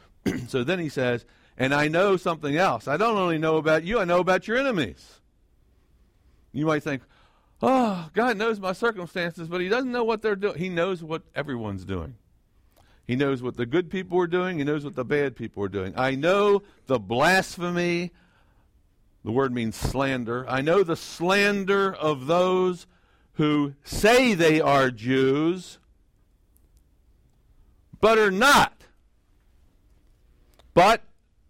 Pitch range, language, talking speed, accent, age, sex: 120-190 Hz, English, 150 wpm, American, 60-79, male